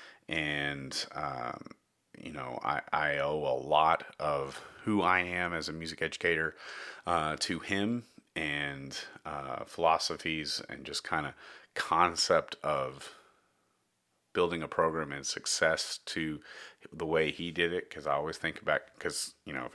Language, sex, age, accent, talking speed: English, male, 30-49, American, 150 wpm